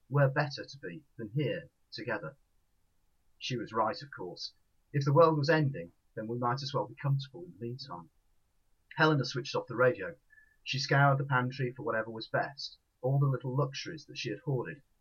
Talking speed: 190 wpm